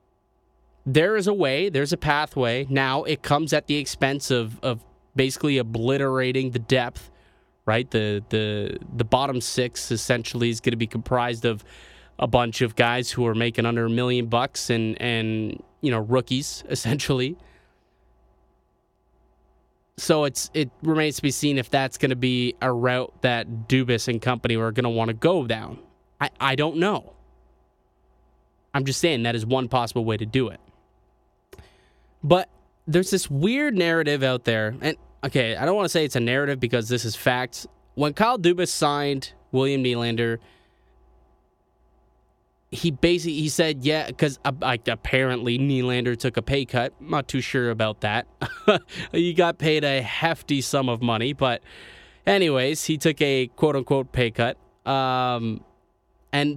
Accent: American